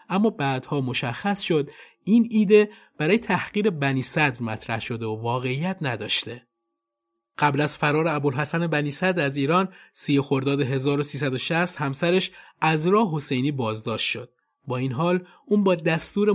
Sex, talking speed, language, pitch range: male, 140 wpm, Persian, 130-185 Hz